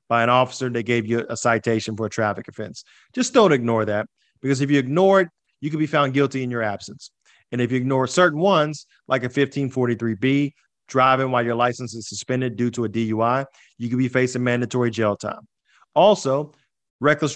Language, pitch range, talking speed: English, 120-155 Hz, 195 wpm